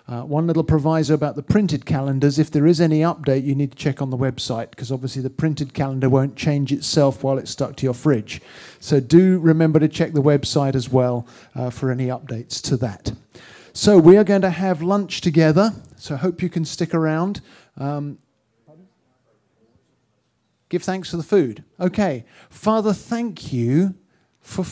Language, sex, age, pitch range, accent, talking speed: English, male, 40-59, 130-165 Hz, British, 180 wpm